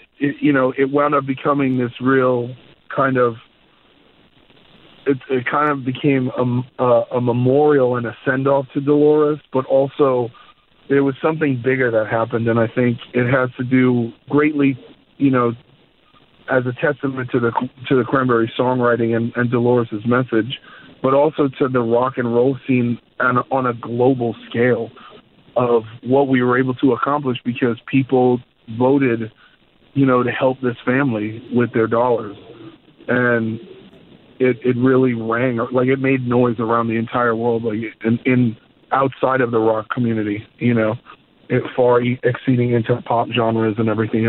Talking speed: 160 wpm